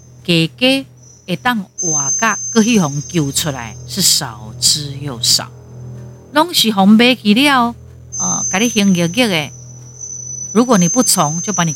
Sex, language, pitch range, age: female, Chinese, 125-200 Hz, 50-69